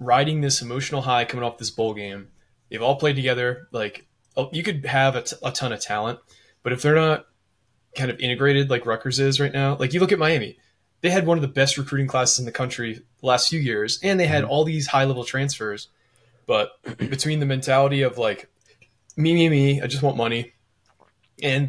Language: English